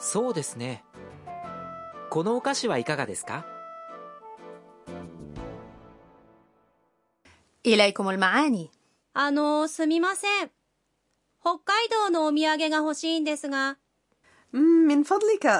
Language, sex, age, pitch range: Arabic, female, 30-49, 195-295 Hz